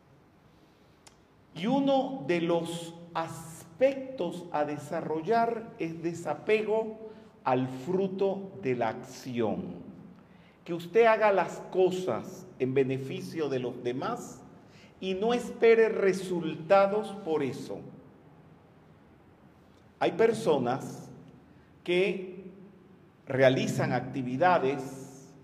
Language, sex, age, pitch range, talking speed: Spanish, male, 50-69, 145-195 Hz, 85 wpm